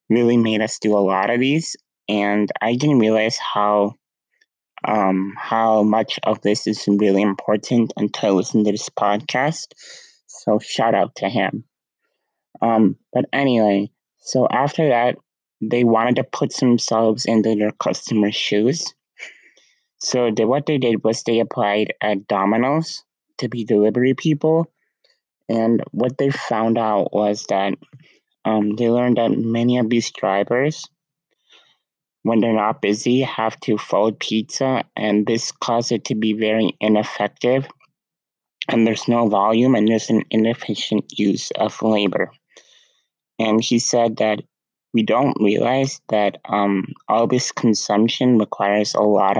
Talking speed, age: 145 wpm, 20-39